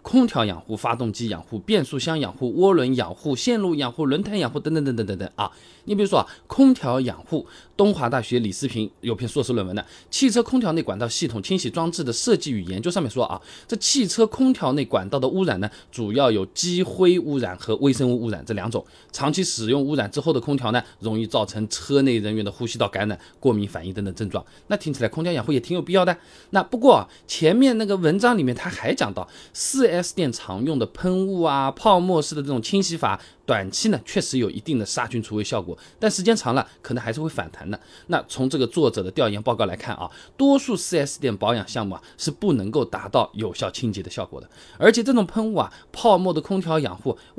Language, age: Chinese, 20-39